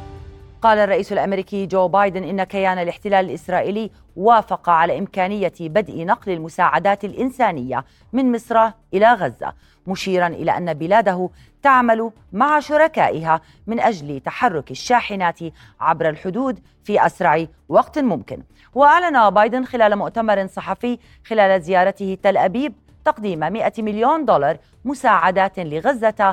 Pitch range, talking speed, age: 175-230 Hz, 120 wpm, 30-49